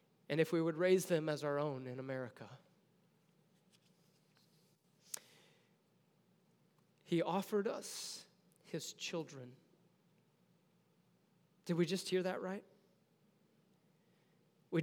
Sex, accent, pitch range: male, American, 170-220 Hz